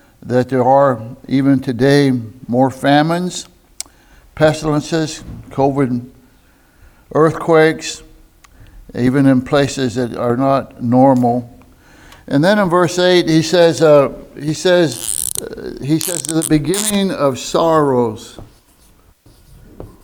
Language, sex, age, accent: English, male, 60-79, American